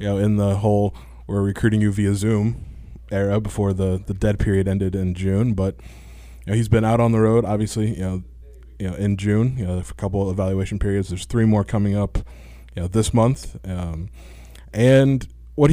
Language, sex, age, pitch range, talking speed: English, male, 20-39, 90-110 Hz, 210 wpm